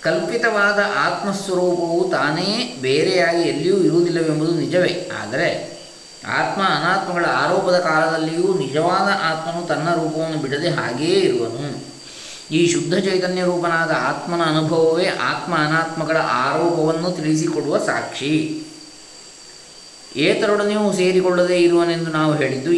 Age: 20-39